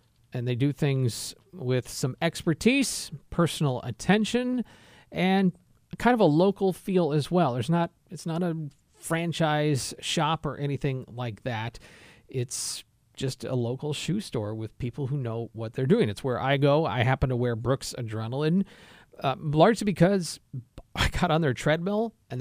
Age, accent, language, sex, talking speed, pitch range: 40-59, American, English, male, 160 wpm, 120-160 Hz